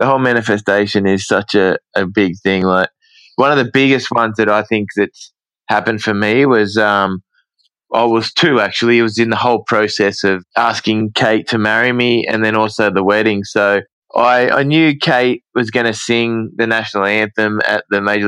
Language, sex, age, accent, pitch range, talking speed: English, male, 20-39, Australian, 105-120 Hz, 195 wpm